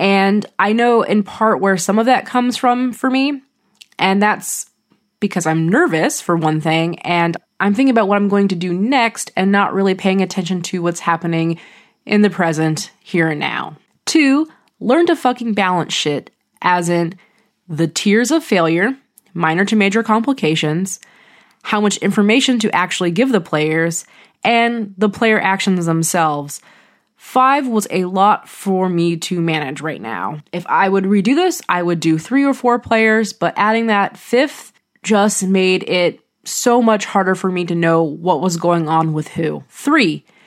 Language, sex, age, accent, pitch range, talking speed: English, female, 20-39, American, 175-230 Hz, 175 wpm